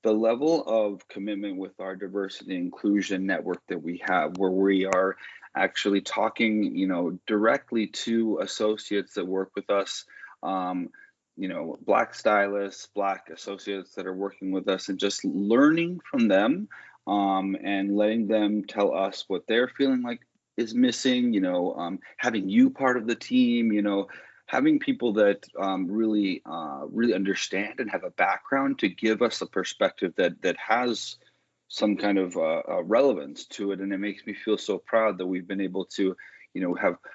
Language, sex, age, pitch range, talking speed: English, male, 30-49, 95-115 Hz, 175 wpm